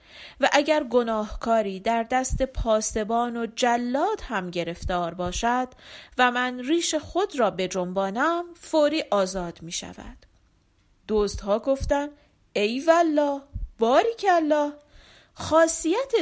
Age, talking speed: 40-59, 110 wpm